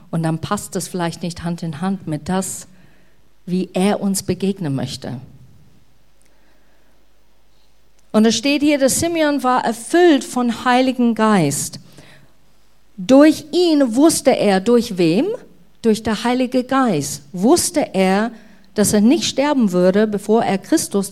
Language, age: German, 50-69